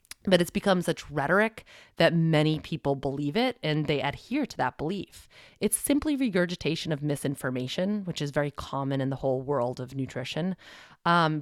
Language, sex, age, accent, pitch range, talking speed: English, female, 30-49, American, 140-195 Hz, 170 wpm